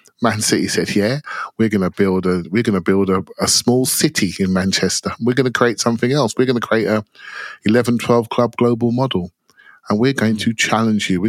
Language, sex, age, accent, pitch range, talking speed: English, male, 30-49, British, 105-135 Hz, 200 wpm